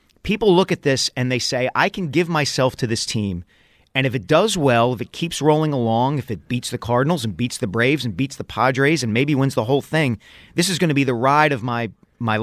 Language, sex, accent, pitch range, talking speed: English, male, American, 115-150 Hz, 255 wpm